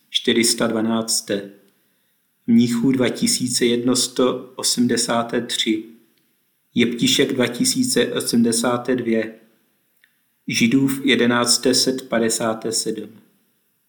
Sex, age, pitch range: male, 50-69, 115-130 Hz